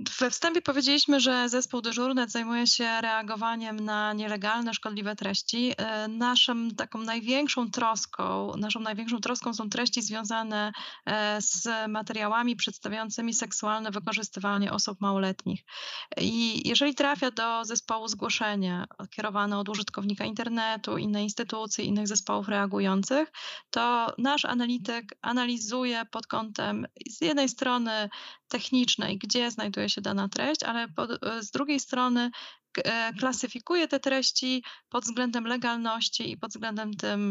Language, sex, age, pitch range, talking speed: Polish, female, 20-39, 210-245 Hz, 120 wpm